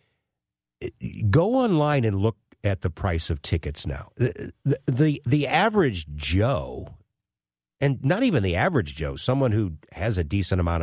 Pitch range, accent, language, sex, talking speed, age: 85-135 Hz, American, English, male, 150 wpm, 50-69